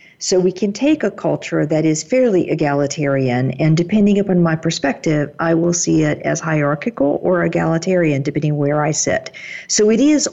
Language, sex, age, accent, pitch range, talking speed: English, female, 50-69, American, 150-185 Hz, 175 wpm